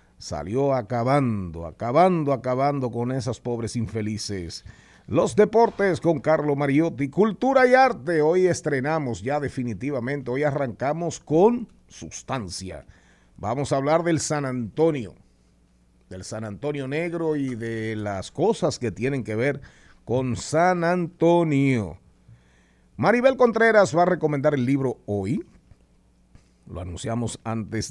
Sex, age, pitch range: male, 50-69, 110-155 Hz